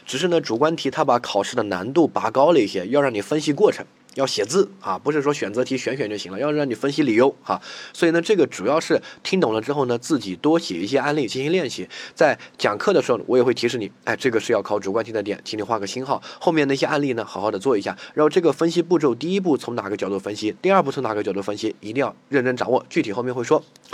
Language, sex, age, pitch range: Chinese, male, 20-39, 110-155 Hz